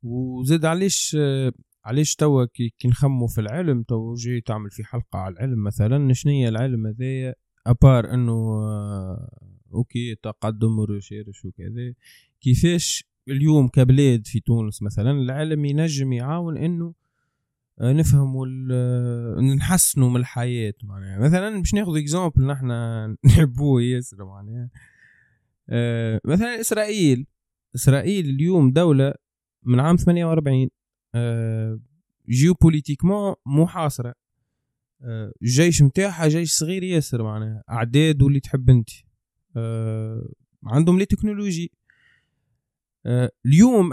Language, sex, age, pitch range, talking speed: Arabic, male, 20-39, 115-150 Hz, 100 wpm